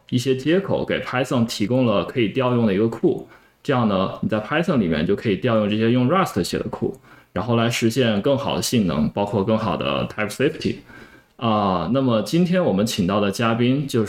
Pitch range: 100-125 Hz